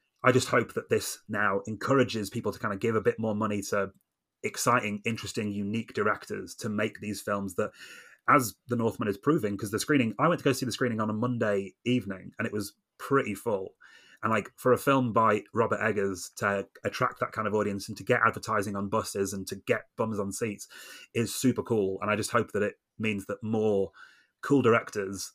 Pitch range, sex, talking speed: 100-115 Hz, male, 215 wpm